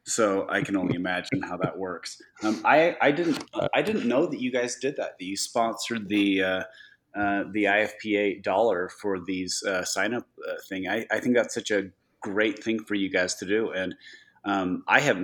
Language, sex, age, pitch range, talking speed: English, male, 30-49, 95-115 Hz, 210 wpm